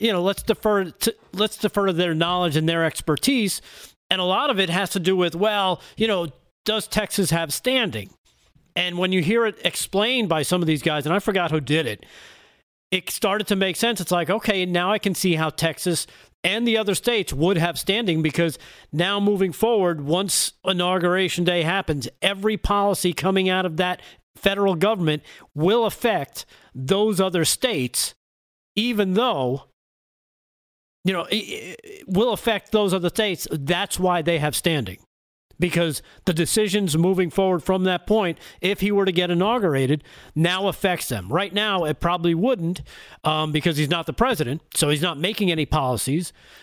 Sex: male